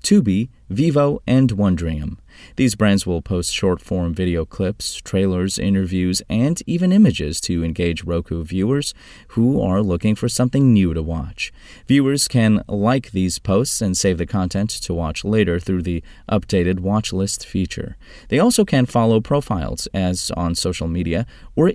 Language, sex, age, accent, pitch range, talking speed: English, male, 30-49, American, 85-120 Hz, 155 wpm